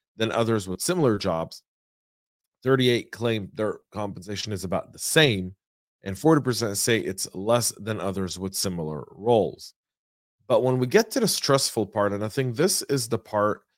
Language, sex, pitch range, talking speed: English, male, 95-130 Hz, 165 wpm